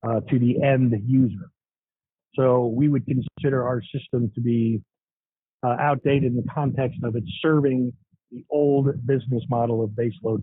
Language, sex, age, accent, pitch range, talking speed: English, male, 40-59, American, 115-135 Hz, 155 wpm